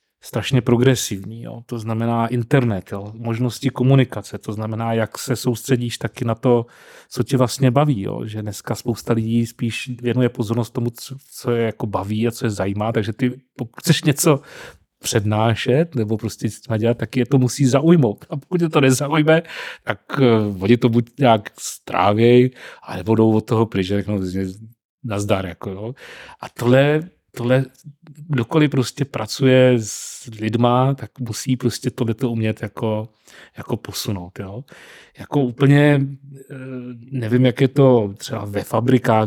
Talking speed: 150 wpm